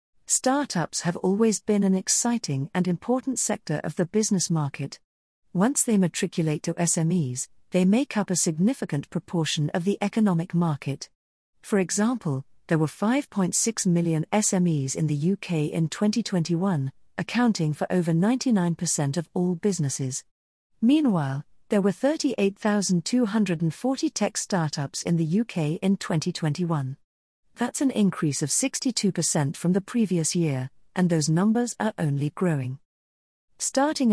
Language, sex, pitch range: English, female, 160-215 Hz